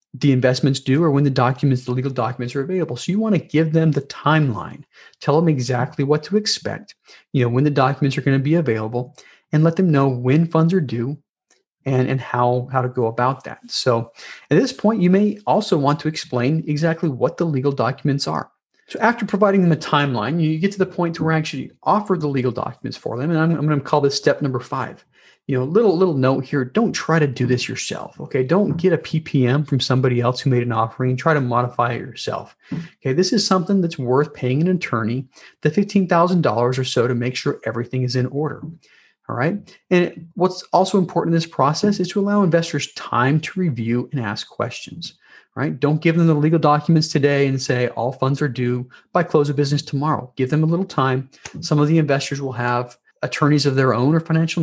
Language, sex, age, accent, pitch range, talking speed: English, male, 40-59, American, 130-165 Hz, 225 wpm